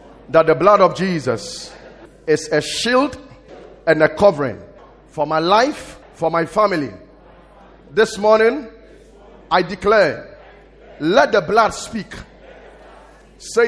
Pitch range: 210-275 Hz